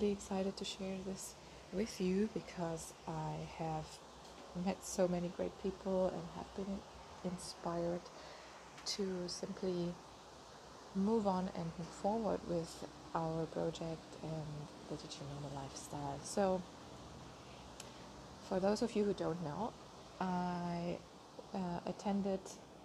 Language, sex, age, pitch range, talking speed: English, female, 20-39, 170-200 Hz, 115 wpm